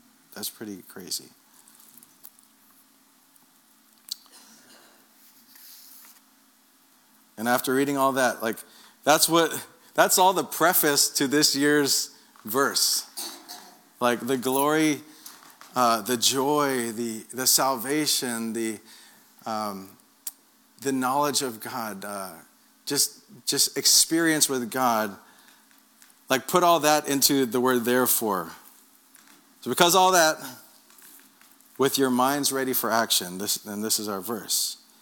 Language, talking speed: English, 110 wpm